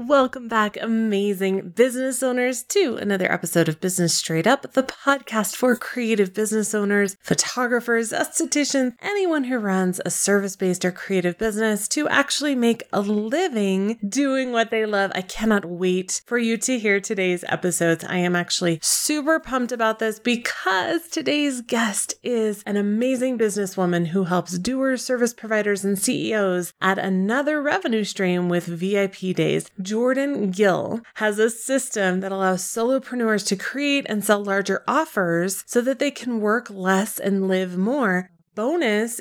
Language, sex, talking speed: English, female, 150 wpm